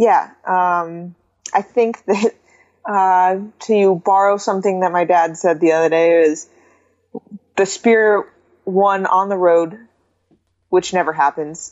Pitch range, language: 165-195 Hz, English